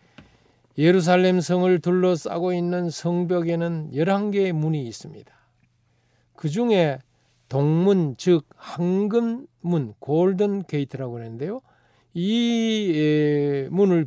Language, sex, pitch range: Korean, male, 130-195 Hz